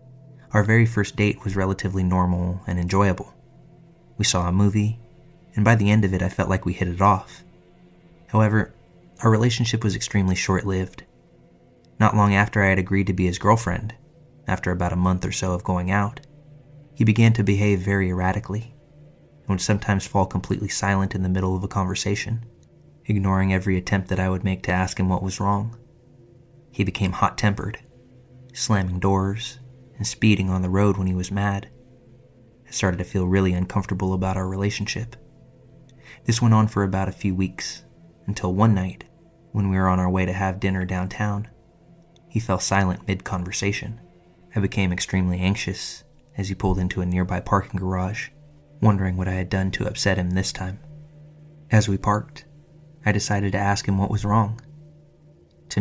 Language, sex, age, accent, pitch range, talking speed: English, male, 20-39, American, 95-115 Hz, 175 wpm